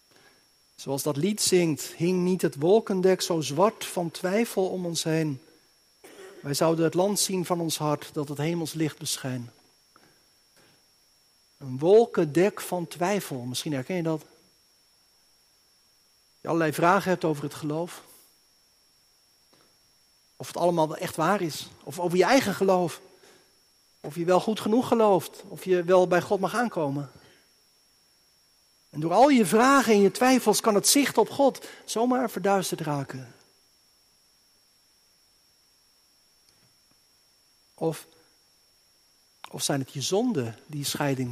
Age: 50-69